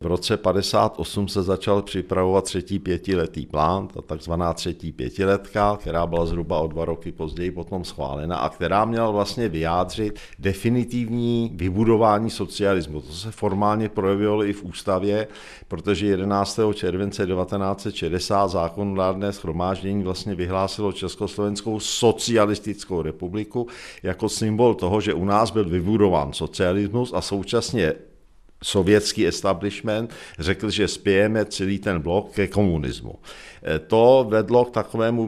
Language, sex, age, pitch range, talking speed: Czech, male, 50-69, 90-105 Hz, 125 wpm